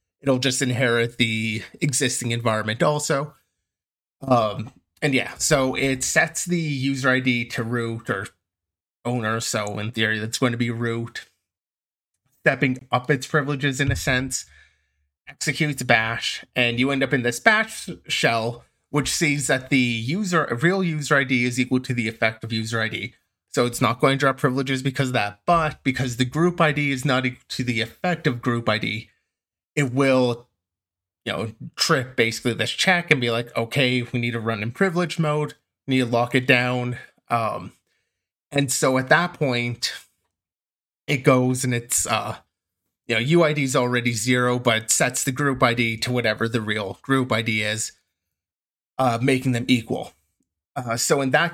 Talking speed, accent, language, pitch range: 170 wpm, American, English, 110-140 Hz